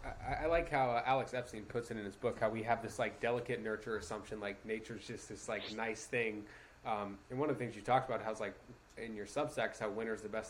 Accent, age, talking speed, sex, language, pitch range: American, 20-39, 265 wpm, male, English, 110-135 Hz